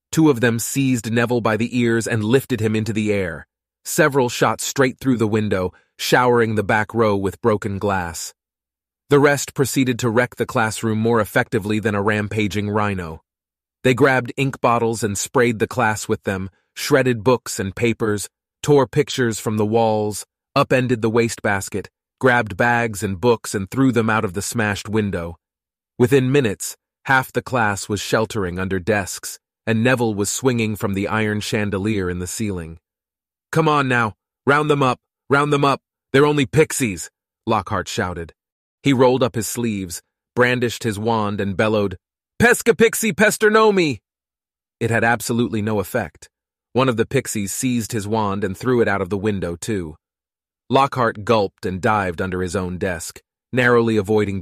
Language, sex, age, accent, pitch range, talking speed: English, male, 30-49, American, 100-125 Hz, 165 wpm